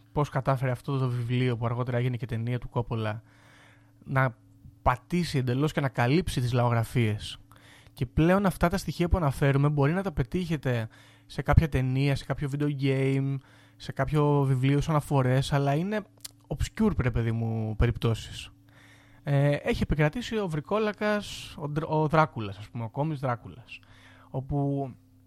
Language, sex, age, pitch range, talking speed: Greek, male, 20-39, 110-145 Hz, 150 wpm